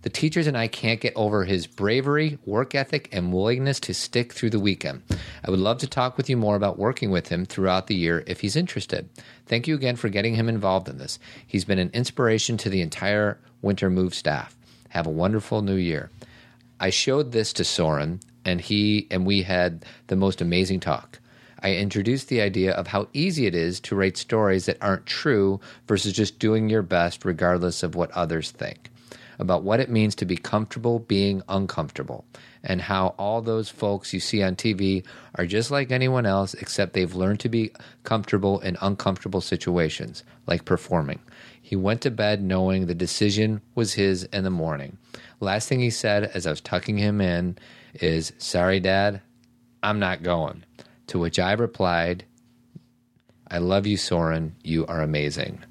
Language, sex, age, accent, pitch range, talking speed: English, male, 40-59, American, 90-115 Hz, 185 wpm